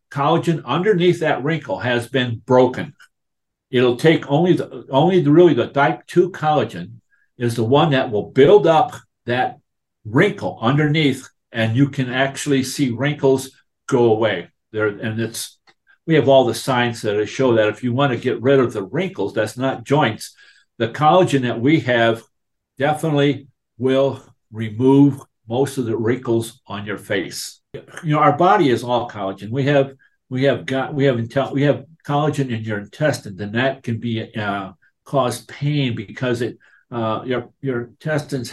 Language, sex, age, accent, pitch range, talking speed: English, male, 50-69, American, 115-145 Hz, 170 wpm